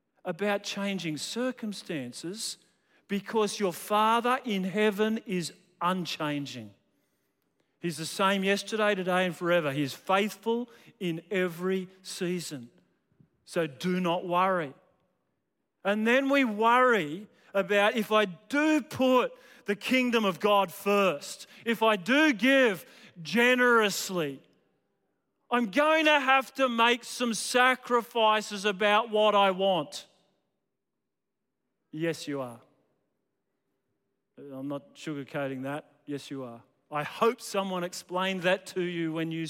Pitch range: 160-220 Hz